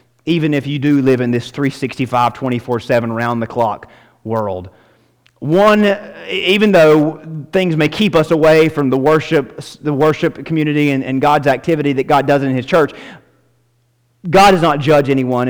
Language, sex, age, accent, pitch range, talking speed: English, male, 30-49, American, 115-155 Hz, 145 wpm